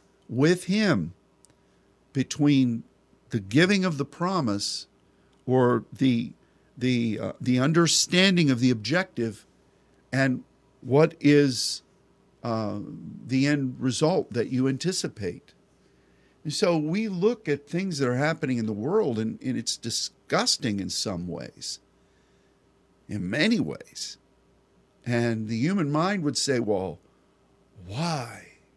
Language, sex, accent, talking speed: English, male, American, 120 wpm